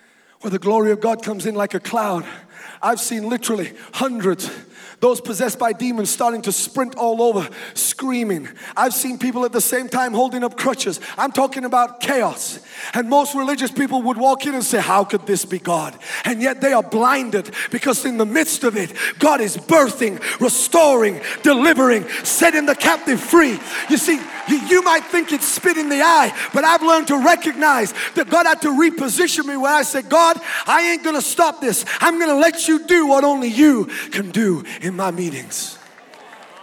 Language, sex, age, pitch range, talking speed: English, male, 30-49, 230-325 Hz, 190 wpm